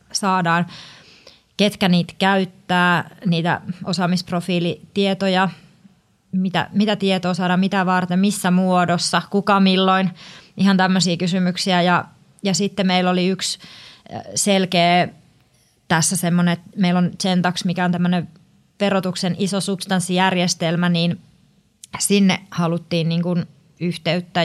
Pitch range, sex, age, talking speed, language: 170-190 Hz, female, 20-39, 105 wpm, Finnish